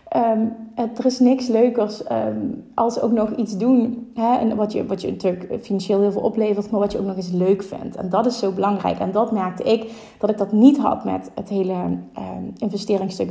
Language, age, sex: Dutch, 30-49, female